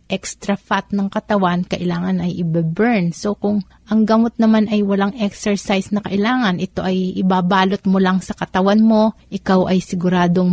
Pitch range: 175-205 Hz